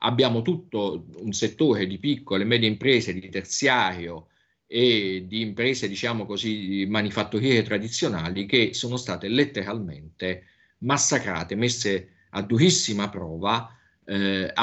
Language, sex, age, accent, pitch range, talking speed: Italian, male, 50-69, native, 95-120 Hz, 115 wpm